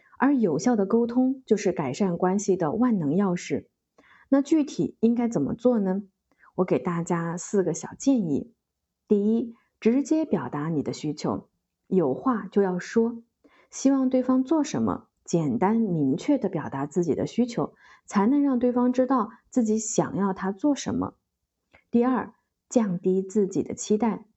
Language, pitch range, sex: Chinese, 185-245 Hz, female